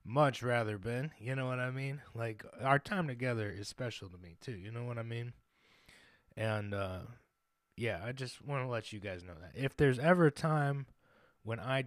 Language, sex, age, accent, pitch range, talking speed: English, male, 20-39, American, 110-140 Hz, 205 wpm